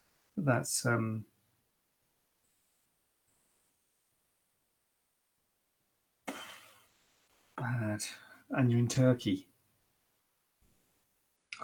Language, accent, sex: English, British, male